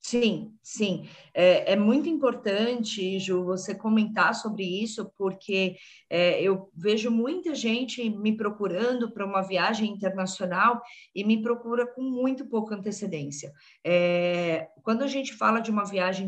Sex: female